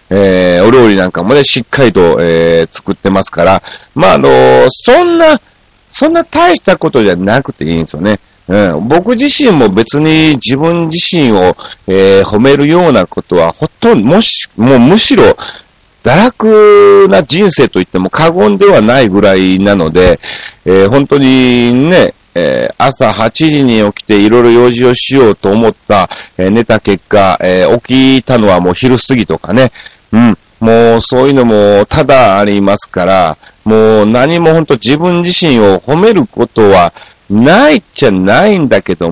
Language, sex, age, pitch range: Japanese, male, 40-59, 95-160 Hz